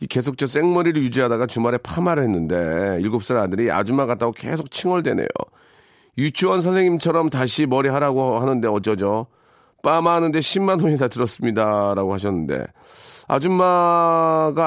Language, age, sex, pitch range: Korean, 40-59, male, 120-170 Hz